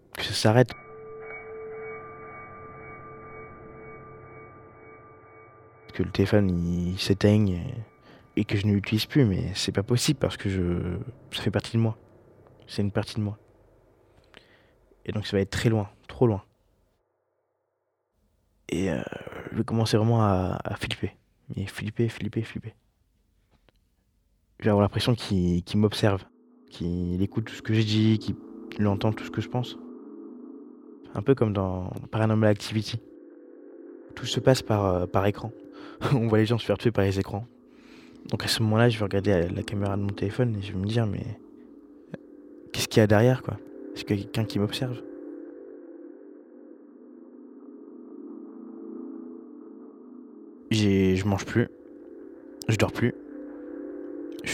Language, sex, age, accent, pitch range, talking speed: French, male, 20-39, French, 100-130 Hz, 145 wpm